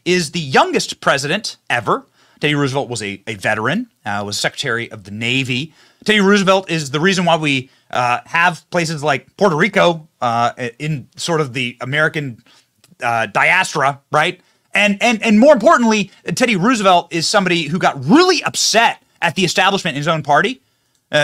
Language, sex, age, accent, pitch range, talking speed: English, male, 30-49, American, 155-235 Hz, 170 wpm